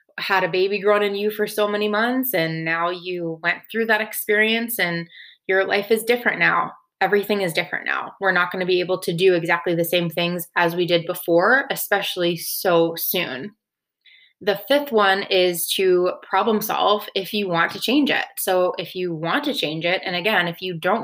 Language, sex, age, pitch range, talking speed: English, female, 20-39, 175-205 Hz, 205 wpm